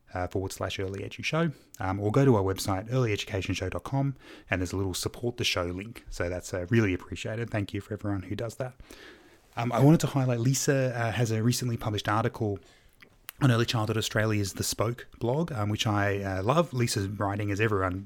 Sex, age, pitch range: male, 20-39, 95-110 Hz